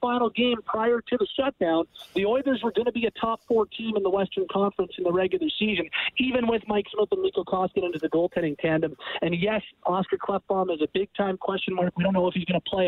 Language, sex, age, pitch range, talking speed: English, male, 40-59, 180-230 Hz, 240 wpm